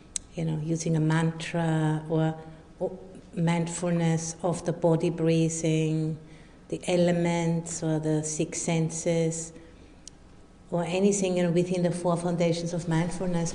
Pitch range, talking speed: 160-180 Hz, 120 wpm